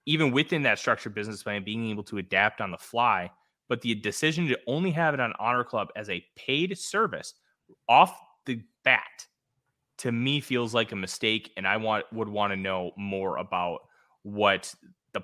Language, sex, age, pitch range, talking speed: English, male, 20-39, 100-125 Hz, 185 wpm